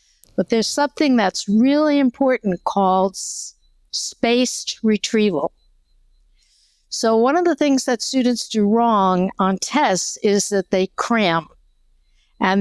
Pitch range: 180-230 Hz